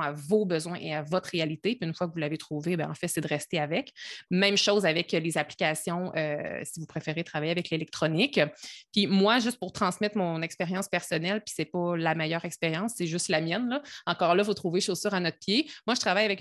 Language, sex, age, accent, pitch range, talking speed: French, female, 20-39, Canadian, 165-195 Hz, 235 wpm